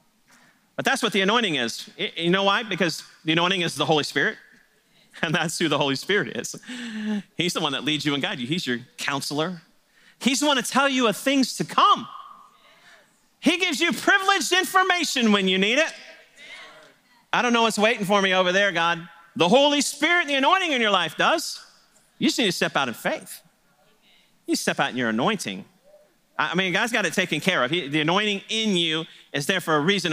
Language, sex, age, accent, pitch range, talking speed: English, male, 40-59, American, 150-225 Hz, 210 wpm